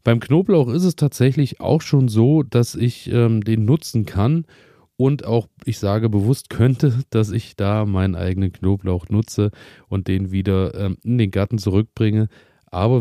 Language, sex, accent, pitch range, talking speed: German, male, German, 95-110 Hz, 165 wpm